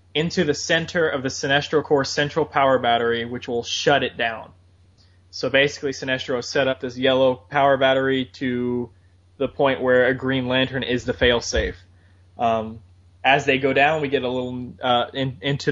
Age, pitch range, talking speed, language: 20-39, 120-140 Hz, 175 wpm, English